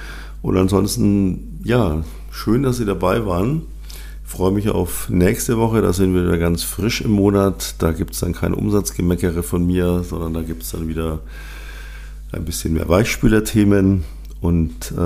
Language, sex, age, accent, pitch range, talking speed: German, male, 50-69, German, 80-95 Hz, 165 wpm